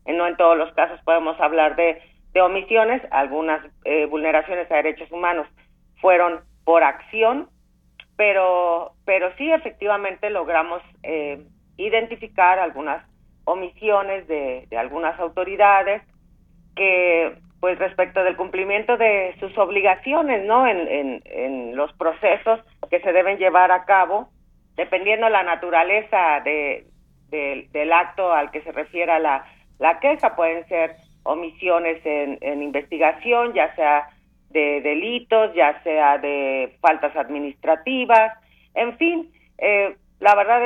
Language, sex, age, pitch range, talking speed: Spanish, female, 40-59, 160-210 Hz, 130 wpm